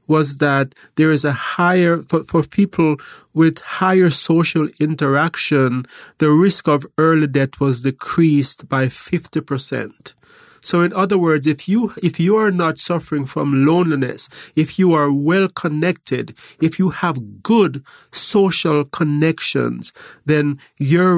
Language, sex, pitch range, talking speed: English, male, 140-170 Hz, 140 wpm